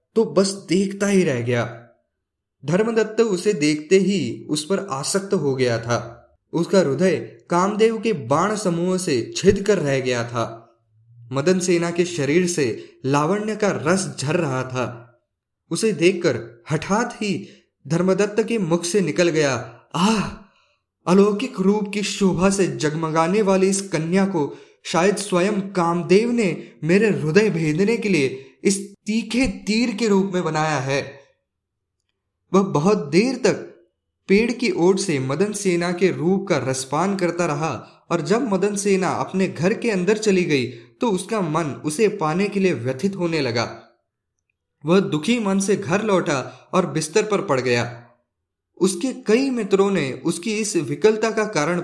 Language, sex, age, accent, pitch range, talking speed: Hindi, male, 20-39, native, 145-200 Hz, 155 wpm